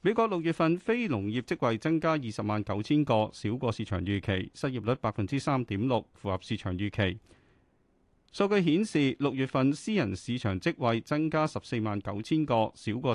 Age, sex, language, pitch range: 40-59, male, Chinese, 105-150 Hz